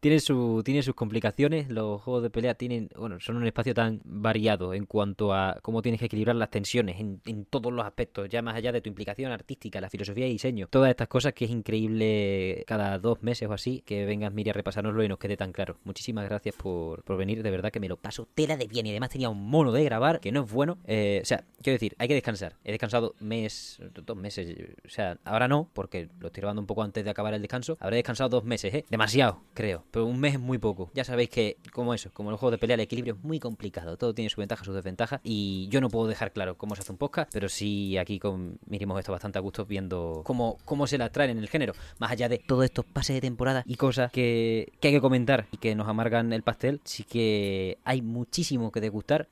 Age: 20-39